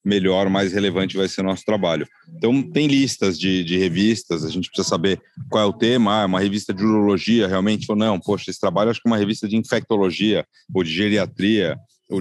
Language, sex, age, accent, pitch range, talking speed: Portuguese, male, 30-49, Brazilian, 95-115 Hz, 210 wpm